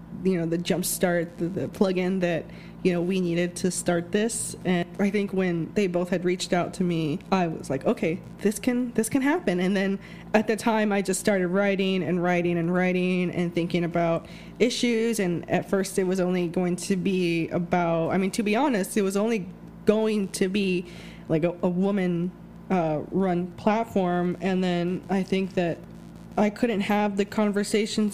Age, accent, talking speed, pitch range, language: 20-39, American, 190 wpm, 180-200 Hz, English